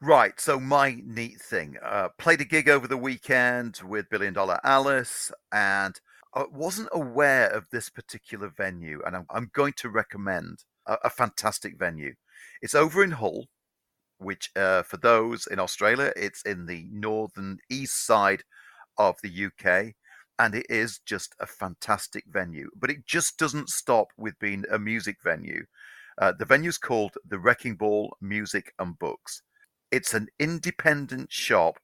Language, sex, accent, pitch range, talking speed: English, male, British, 100-140 Hz, 155 wpm